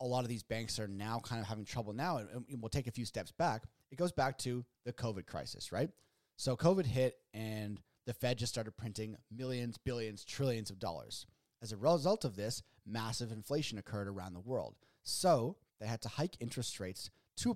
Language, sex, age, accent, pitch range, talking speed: English, male, 30-49, American, 110-130 Hz, 210 wpm